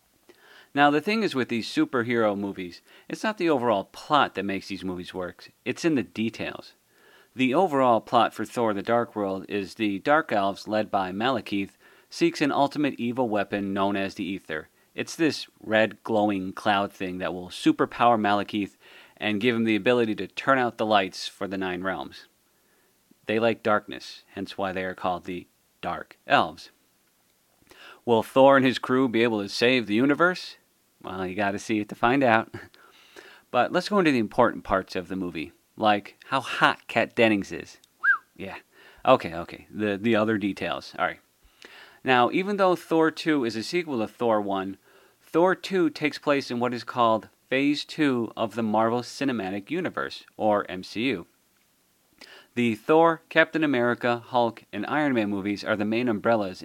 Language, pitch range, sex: English, 100-125 Hz, male